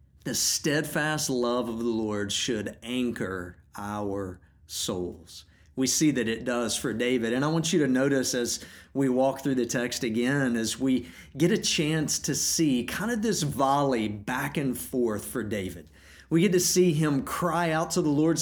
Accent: American